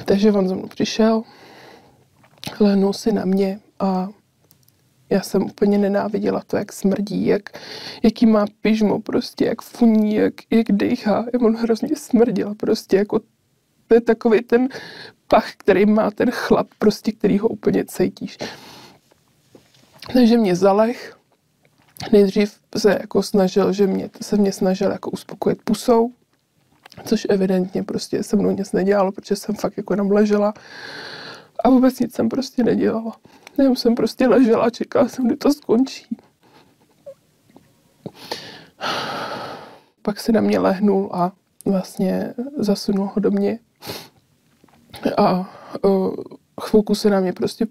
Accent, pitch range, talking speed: native, 200-230 Hz, 135 wpm